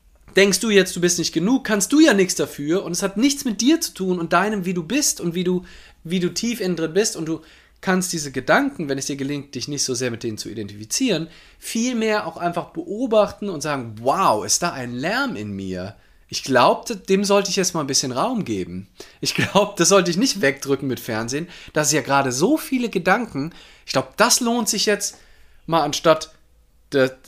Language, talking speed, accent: German, 220 wpm, German